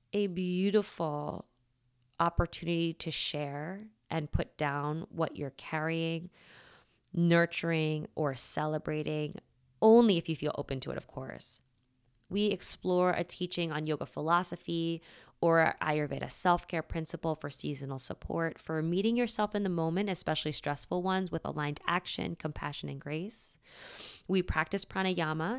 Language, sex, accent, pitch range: English, female, American, 155-185 Hz